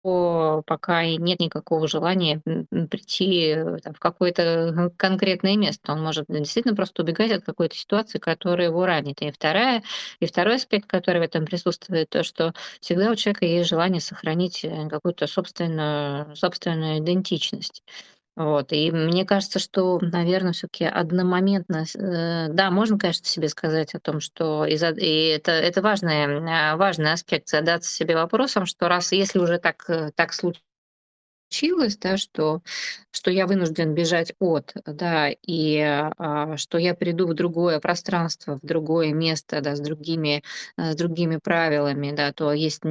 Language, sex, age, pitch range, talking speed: Russian, female, 20-39, 155-185 Hz, 145 wpm